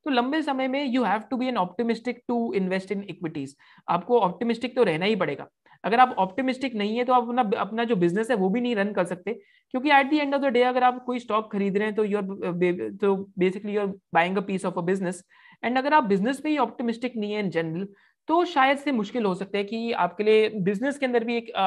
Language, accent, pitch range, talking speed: Hindi, native, 190-250 Hz, 220 wpm